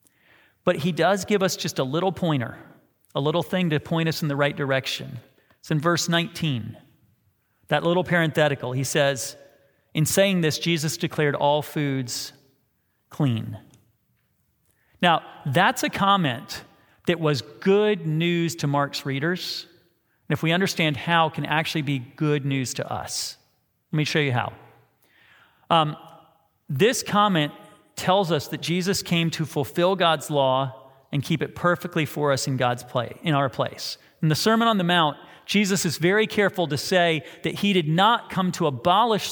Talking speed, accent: 165 wpm, American